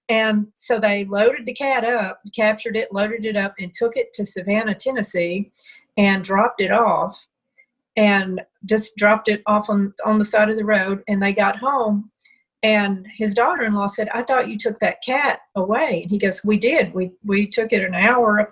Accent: American